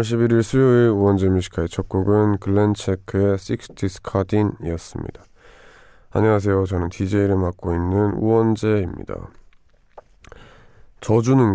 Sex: male